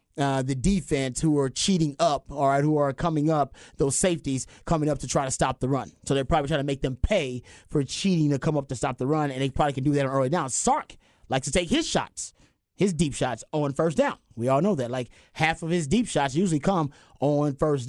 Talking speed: 250 wpm